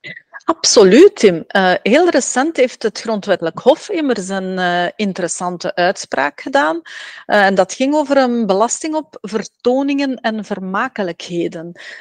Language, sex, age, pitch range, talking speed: Dutch, female, 40-59, 180-265 Hz, 130 wpm